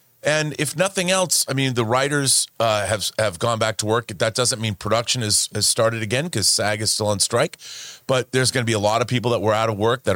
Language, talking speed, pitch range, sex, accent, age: English, 260 wpm, 110-135 Hz, male, American, 30-49